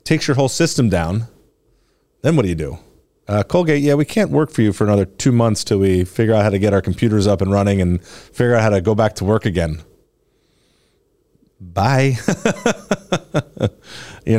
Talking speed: 190 wpm